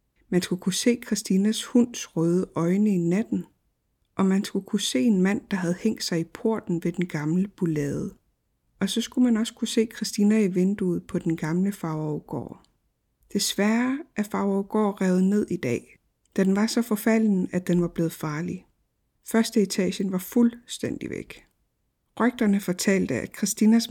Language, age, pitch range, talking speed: Danish, 60-79, 180-215 Hz, 170 wpm